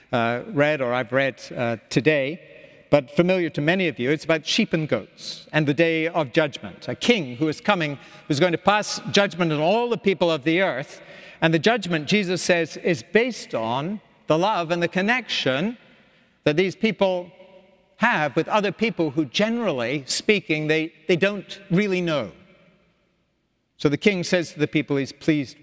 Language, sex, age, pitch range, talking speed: English, male, 60-79, 145-190 Hz, 180 wpm